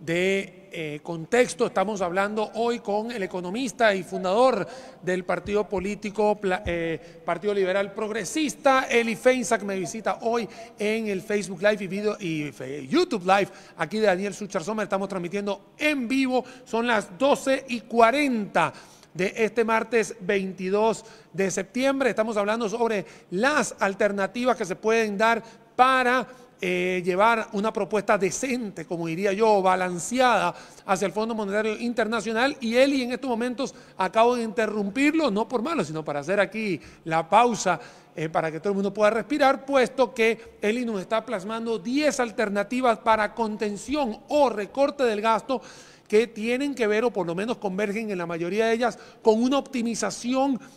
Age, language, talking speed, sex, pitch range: 40-59, Spanish, 155 wpm, male, 195-235 Hz